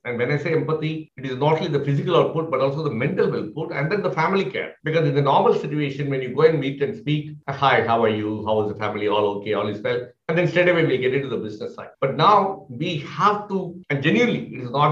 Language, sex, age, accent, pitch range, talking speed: English, male, 60-79, Indian, 125-165 Hz, 275 wpm